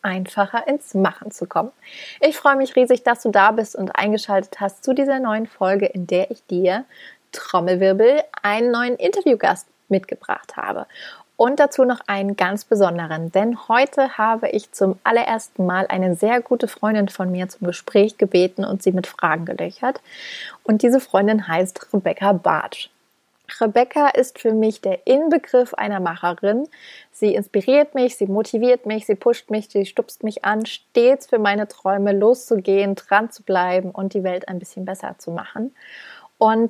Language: German